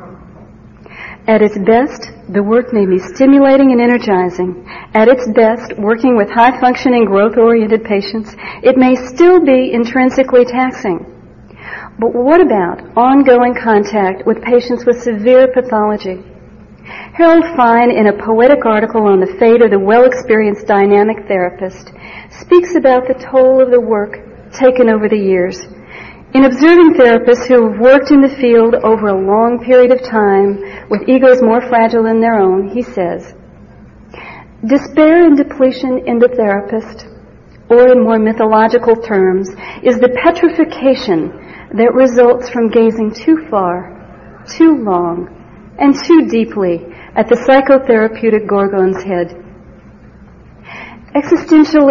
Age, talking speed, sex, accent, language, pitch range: 50-69, 130 wpm, female, American, English, 210-255 Hz